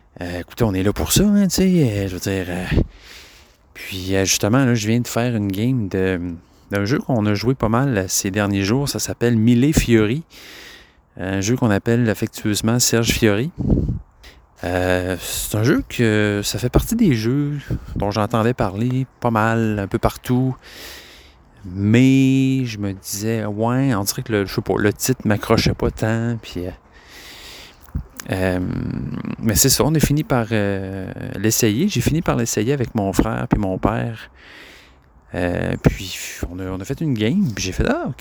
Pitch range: 95-125 Hz